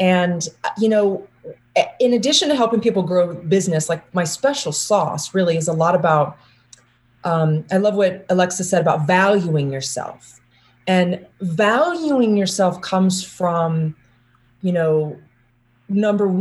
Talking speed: 130 wpm